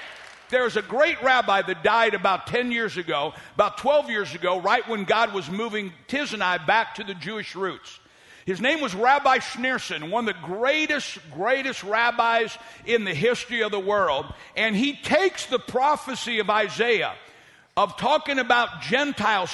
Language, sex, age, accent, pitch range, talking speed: English, male, 60-79, American, 205-265 Hz, 170 wpm